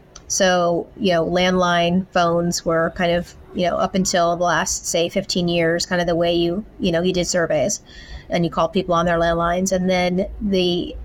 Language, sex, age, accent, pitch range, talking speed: English, female, 30-49, American, 175-195 Hz, 200 wpm